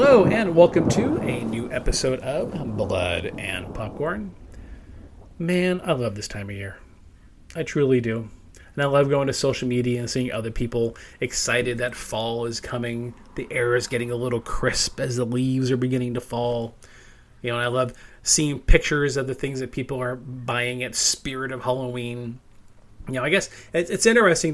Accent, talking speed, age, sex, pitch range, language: American, 185 wpm, 30-49, male, 115-140 Hz, English